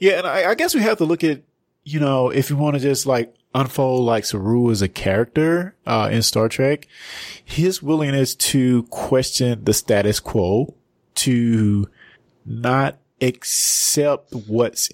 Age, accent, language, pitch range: 20-39, American, English, 110-150 Hz